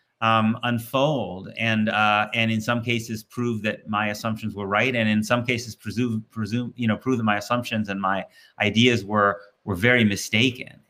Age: 30-49